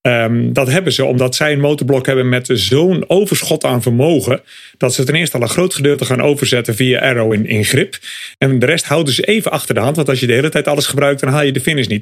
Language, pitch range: English, 125-155 Hz